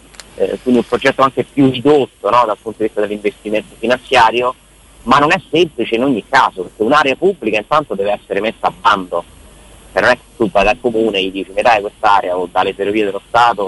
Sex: male